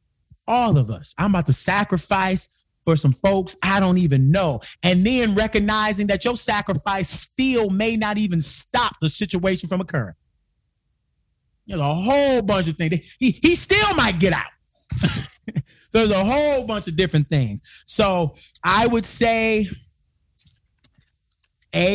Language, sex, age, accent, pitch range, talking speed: English, male, 30-49, American, 150-195 Hz, 145 wpm